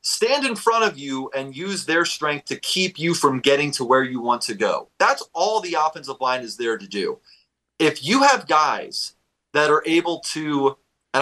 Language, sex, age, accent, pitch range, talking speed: English, male, 30-49, American, 115-150 Hz, 205 wpm